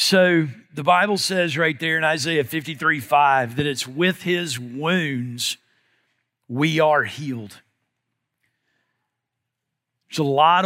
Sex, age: male, 50-69